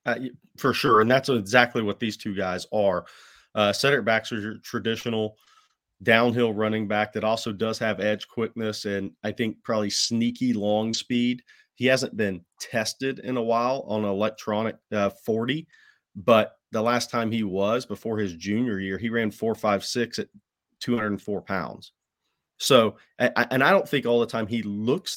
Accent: American